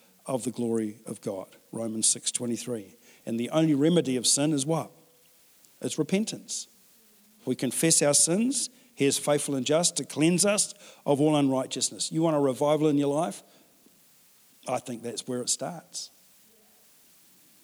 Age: 50-69